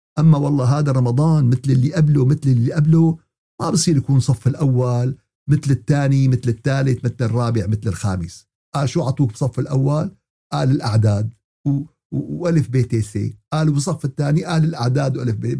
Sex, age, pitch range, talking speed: male, 50-69, 130-170 Hz, 160 wpm